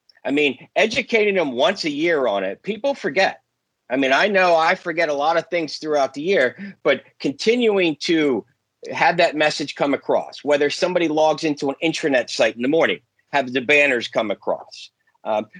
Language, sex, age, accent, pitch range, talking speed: English, male, 50-69, American, 150-230 Hz, 185 wpm